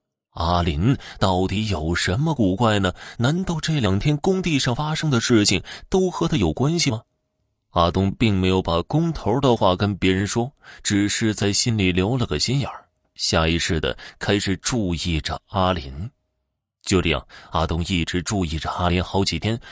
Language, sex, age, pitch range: Chinese, male, 20-39, 90-135 Hz